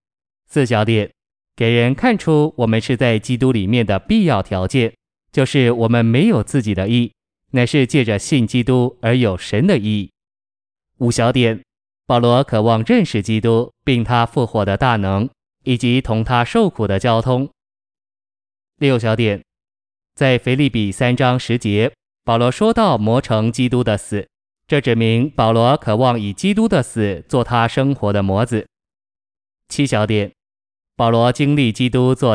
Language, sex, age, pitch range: Chinese, male, 20-39, 105-130 Hz